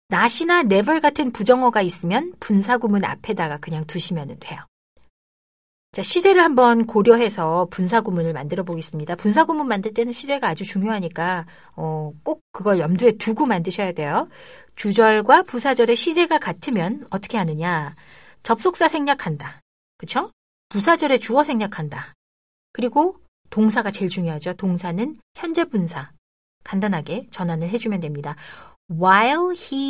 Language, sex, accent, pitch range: Korean, female, native, 180-255 Hz